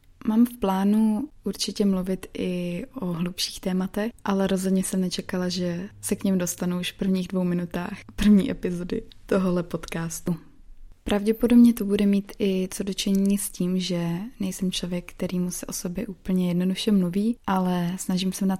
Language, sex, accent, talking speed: Czech, female, native, 165 wpm